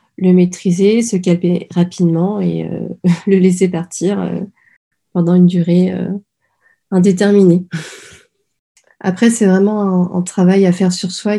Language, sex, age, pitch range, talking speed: French, female, 30-49, 175-195 Hz, 135 wpm